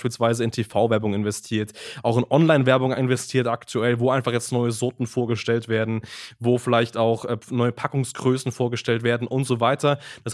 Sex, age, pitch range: male, 20-39, 115-140 Hz